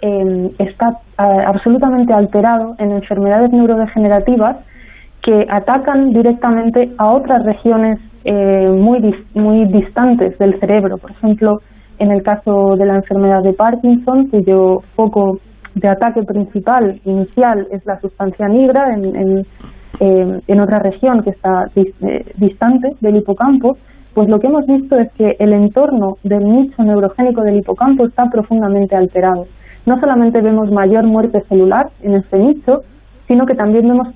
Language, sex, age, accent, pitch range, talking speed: Spanish, female, 20-39, Spanish, 195-235 Hz, 135 wpm